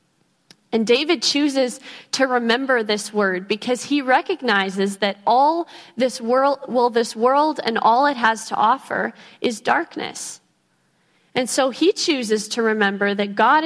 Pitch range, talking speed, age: 200-260 Hz, 145 wpm, 20-39